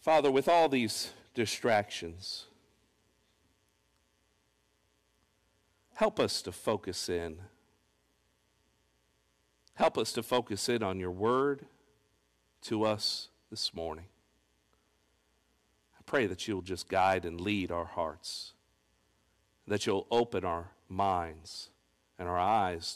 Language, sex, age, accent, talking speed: English, male, 50-69, American, 105 wpm